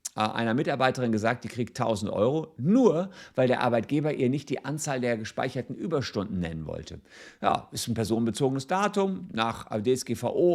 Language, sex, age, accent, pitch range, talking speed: German, male, 50-69, German, 110-150 Hz, 155 wpm